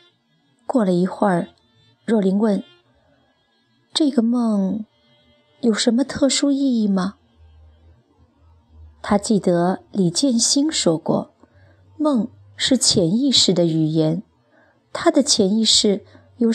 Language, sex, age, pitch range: Chinese, female, 20-39, 180-270 Hz